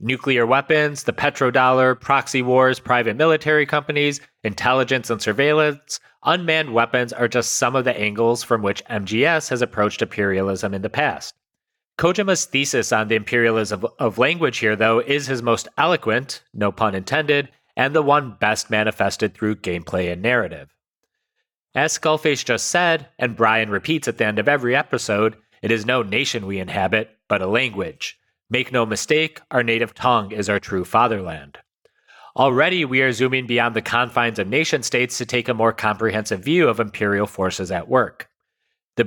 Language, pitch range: English, 110-140 Hz